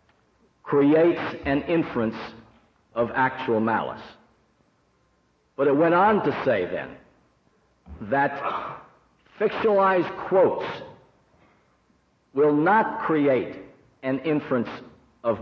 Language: English